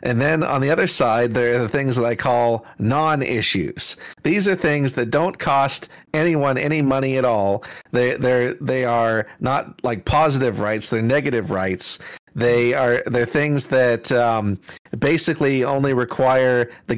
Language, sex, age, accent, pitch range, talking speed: English, male, 40-59, American, 115-140 Hz, 165 wpm